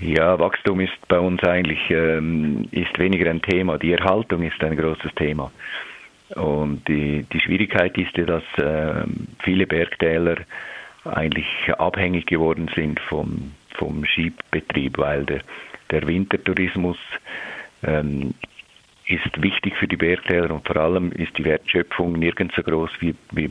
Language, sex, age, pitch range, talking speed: German, male, 50-69, 80-95 Hz, 140 wpm